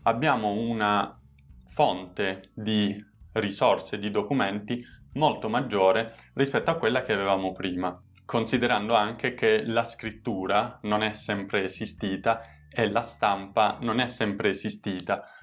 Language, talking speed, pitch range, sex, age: Italian, 120 wpm, 100-125 Hz, male, 20-39